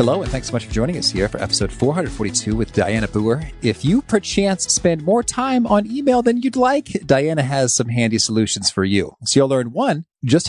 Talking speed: 215 wpm